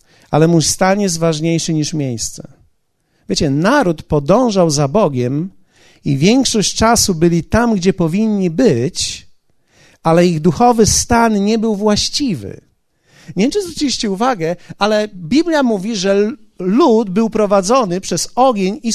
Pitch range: 155-225 Hz